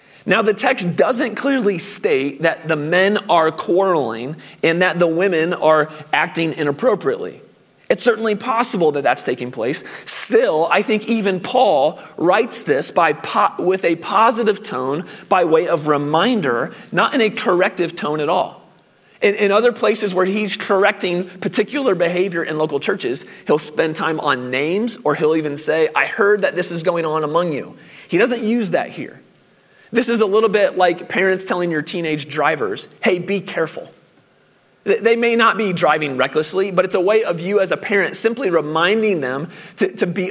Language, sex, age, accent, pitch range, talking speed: English, male, 30-49, American, 160-210 Hz, 175 wpm